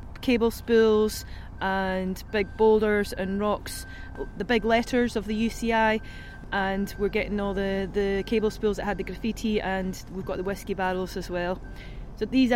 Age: 20-39